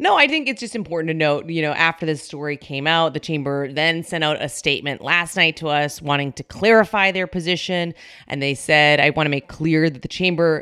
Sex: female